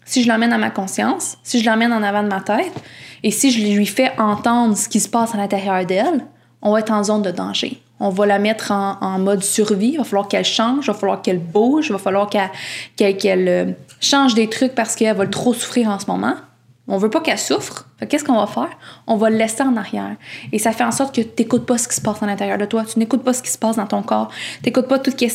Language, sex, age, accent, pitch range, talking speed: English, female, 20-39, Canadian, 200-230 Hz, 270 wpm